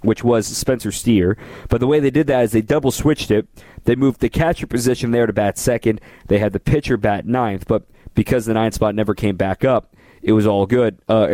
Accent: American